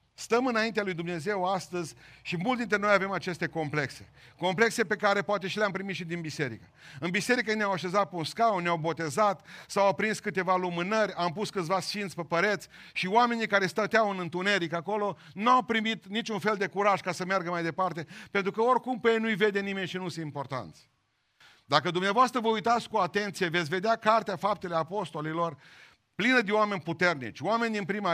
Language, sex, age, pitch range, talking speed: Romanian, male, 40-59, 165-210 Hz, 195 wpm